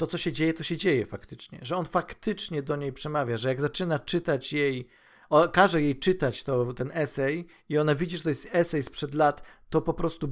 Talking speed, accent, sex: 220 wpm, native, male